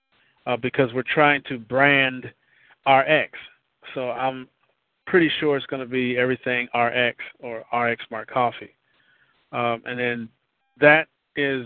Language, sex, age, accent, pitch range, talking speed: English, male, 40-59, American, 125-145 Hz, 135 wpm